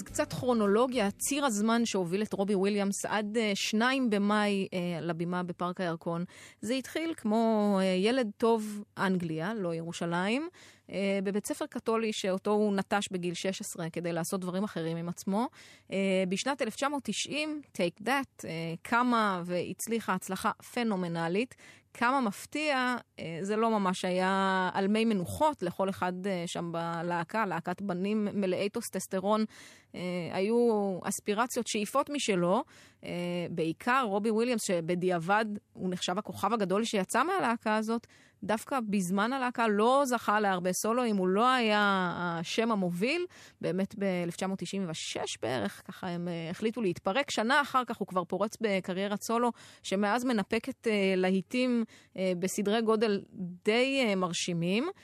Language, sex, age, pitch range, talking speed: Hebrew, female, 20-39, 180-230 Hz, 125 wpm